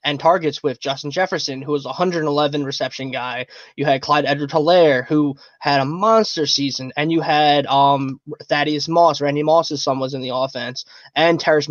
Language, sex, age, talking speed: English, male, 20-39, 180 wpm